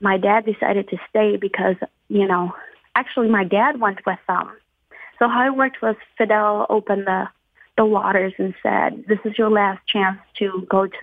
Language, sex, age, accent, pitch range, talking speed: English, female, 20-39, American, 190-215 Hz, 185 wpm